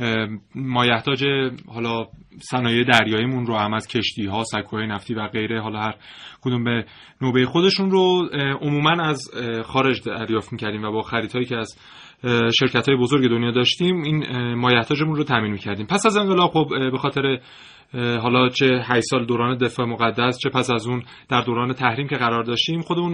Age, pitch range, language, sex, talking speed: 30-49, 115-140 Hz, Persian, male, 160 wpm